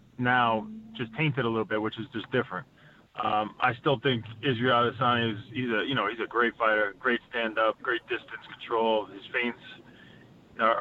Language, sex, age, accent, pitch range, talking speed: English, male, 20-39, American, 110-130 Hz, 170 wpm